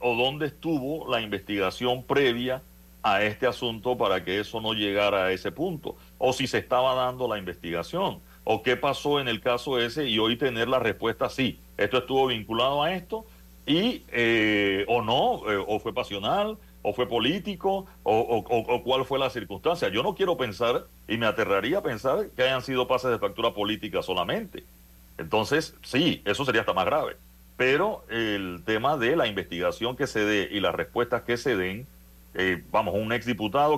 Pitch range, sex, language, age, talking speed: 90-130 Hz, male, Spanish, 60-79, 185 wpm